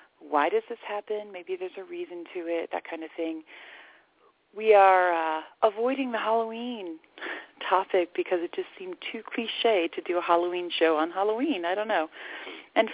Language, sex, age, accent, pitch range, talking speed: English, female, 40-59, American, 170-240 Hz, 175 wpm